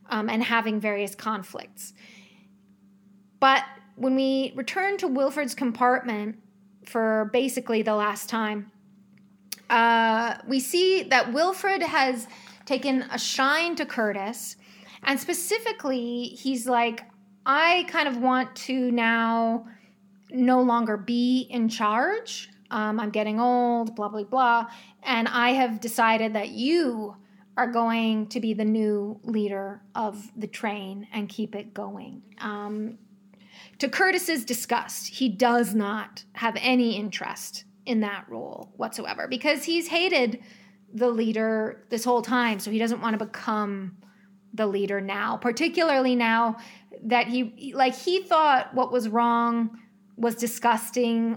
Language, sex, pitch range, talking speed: English, female, 210-255 Hz, 130 wpm